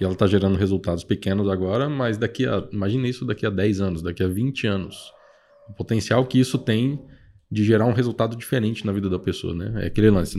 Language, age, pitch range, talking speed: Portuguese, 20-39, 100-130 Hz, 215 wpm